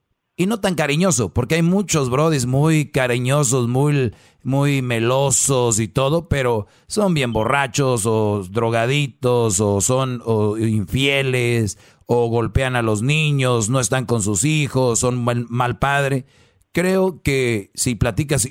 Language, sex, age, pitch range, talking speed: Spanish, male, 40-59, 115-145 Hz, 135 wpm